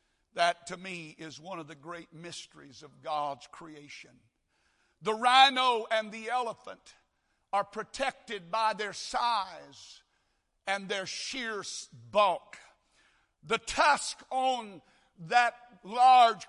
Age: 60-79